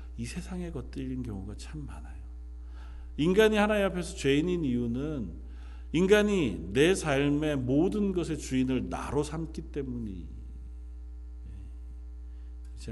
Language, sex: Korean, male